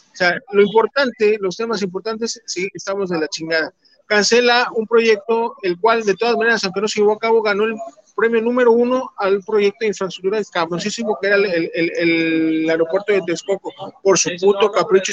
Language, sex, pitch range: Spanish, male, 185-230 Hz